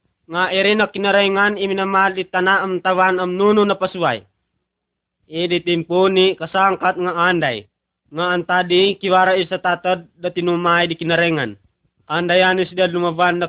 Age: 20-39